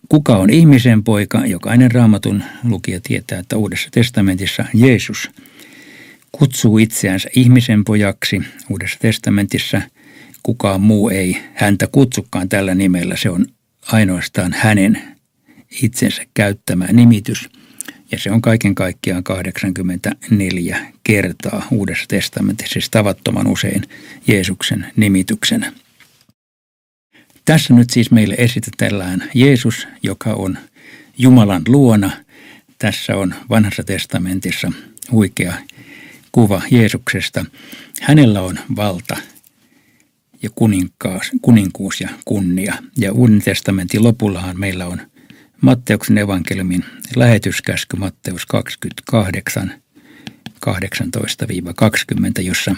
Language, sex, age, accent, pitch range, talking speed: Finnish, male, 60-79, native, 95-120 Hz, 95 wpm